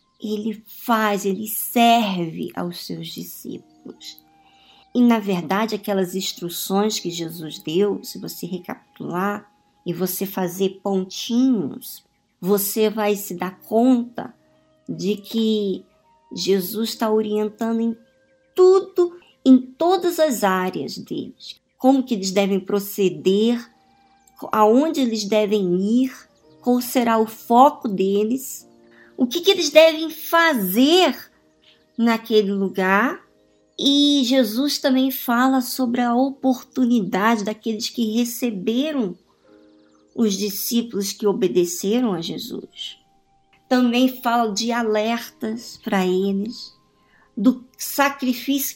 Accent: Brazilian